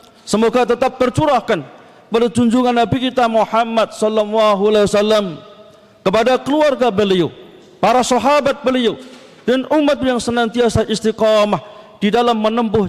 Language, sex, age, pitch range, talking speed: Indonesian, male, 40-59, 210-270 Hz, 115 wpm